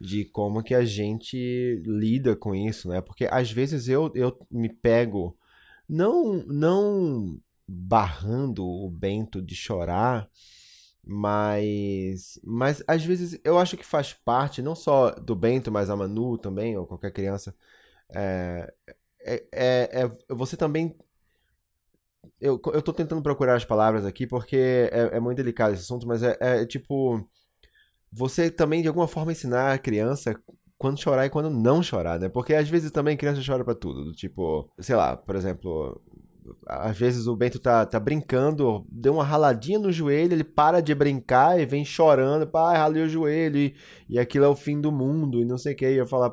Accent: Brazilian